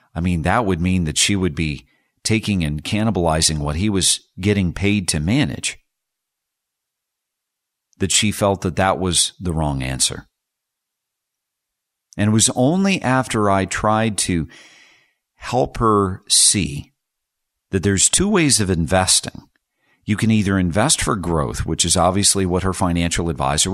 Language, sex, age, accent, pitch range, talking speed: English, male, 50-69, American, 90-110 Hz, 145 wpm